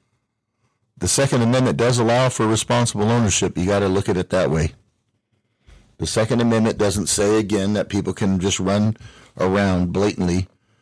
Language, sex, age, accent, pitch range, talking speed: English, male, 50-69, American, 95-120 Hz, 160 wpm